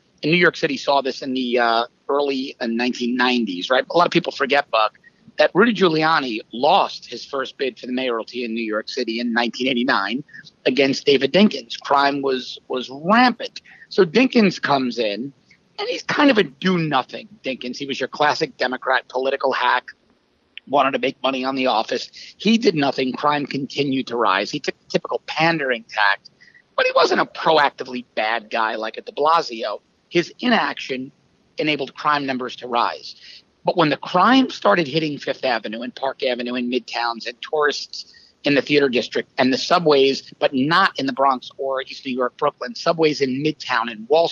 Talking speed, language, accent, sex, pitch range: 185 wpm, English, American, male, 125-170 Hz